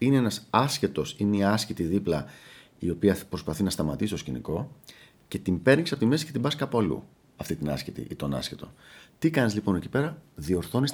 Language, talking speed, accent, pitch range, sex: Greek, 205 wpm, native, 80-125 Hz, male